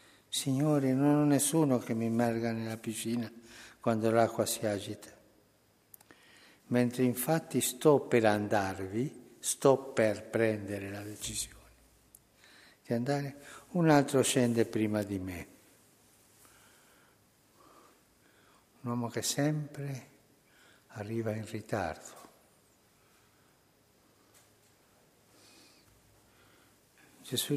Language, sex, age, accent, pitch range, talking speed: Italian, male, 60-79, native, 105-125 Hz, 85 wpm